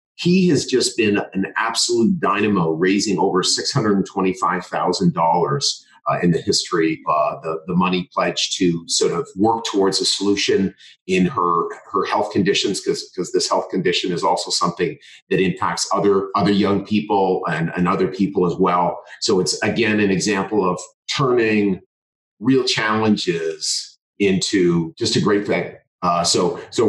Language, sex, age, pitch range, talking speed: English, male, 40-59, 95-115 Hz, 145 wpm